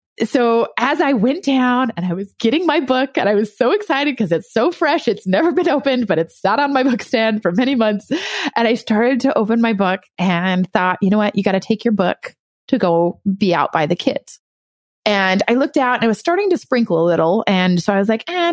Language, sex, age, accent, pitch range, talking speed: English, female, 20-39, American, 185-245 Hz, 250 wpm